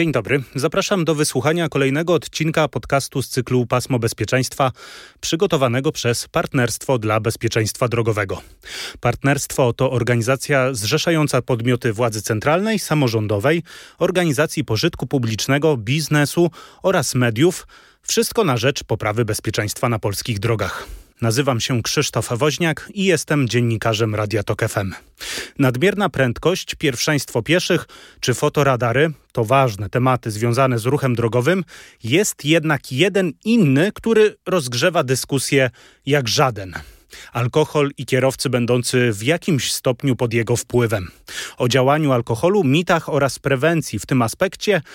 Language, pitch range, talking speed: Polish, 120-155 Hz, 120 wpm